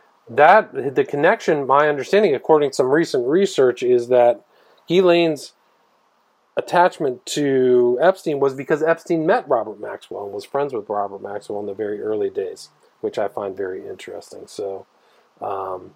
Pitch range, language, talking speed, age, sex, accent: 110-180 Hz, English, 150 wpm, 40-59, male, American